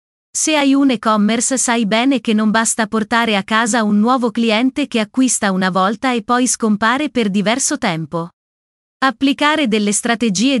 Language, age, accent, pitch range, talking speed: Italian, 30-49, native, 210-250 Hz, 160 wpm